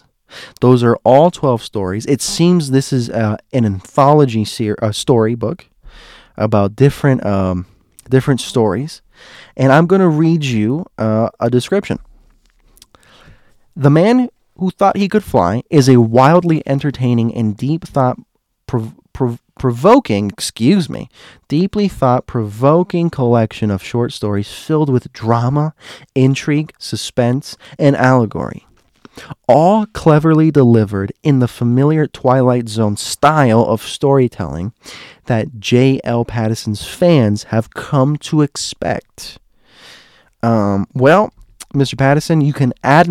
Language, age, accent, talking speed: English, 20-39, American, 125 wpm